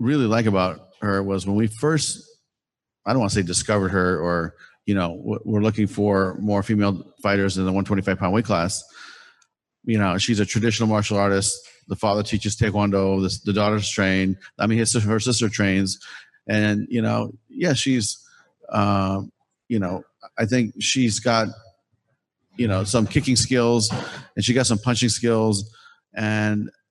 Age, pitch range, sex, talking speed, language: 40-59, 100-115 Hz, male, 165 wpm, English